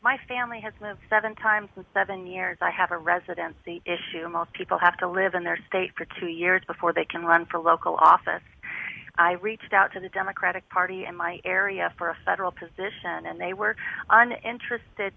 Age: 40-59